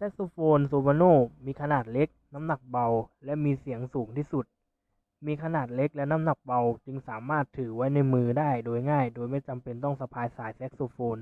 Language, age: Thai, 20-39